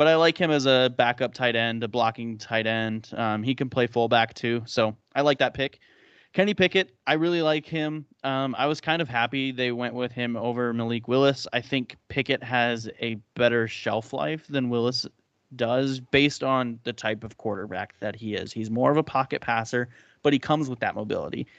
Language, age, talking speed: English, 20-39, 210 wpm